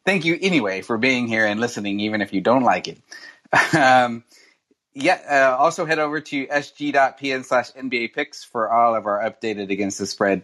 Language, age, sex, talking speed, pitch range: English, 30-49, male, 190 wpm, 120-155 Hz